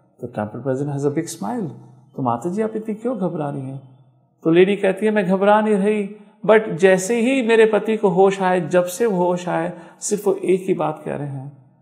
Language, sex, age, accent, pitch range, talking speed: English, male, 50-69, Indian, 145-205 Hz, 210 wpm